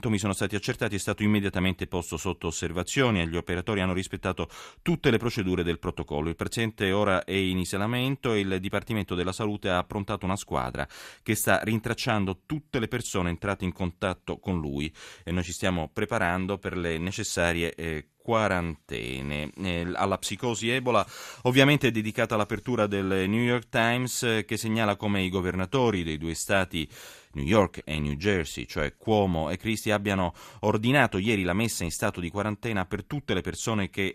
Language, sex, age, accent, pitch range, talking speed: Italian, male, 30-49, native, 85-105 Hz, 175 wpm